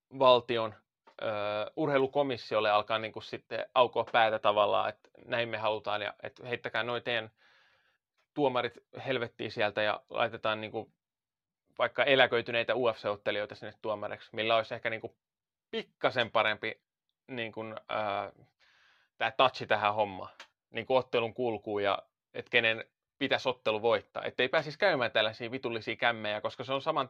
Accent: native